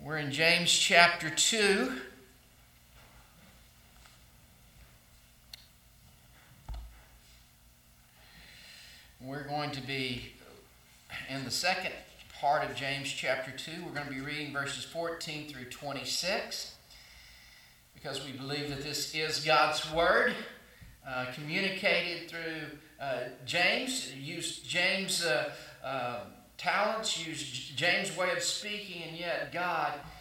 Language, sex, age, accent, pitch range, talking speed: English, male, 50-69, American, 125-170 Hz, 105 wpm